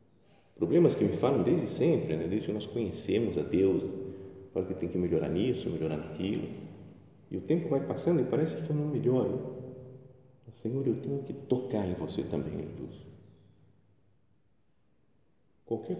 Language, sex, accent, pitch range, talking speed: Portuguese, male, Brazilian, 95-140 Hz, 160 wpm